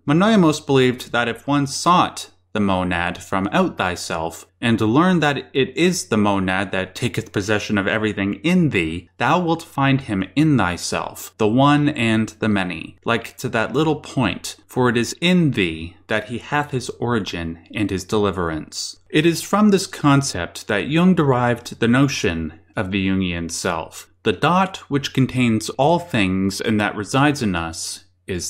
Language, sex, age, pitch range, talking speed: English, male, 20-39, 100-145 Hz, 170 wpm